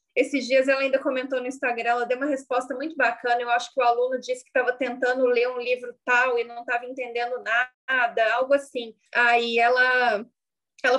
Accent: Brazilian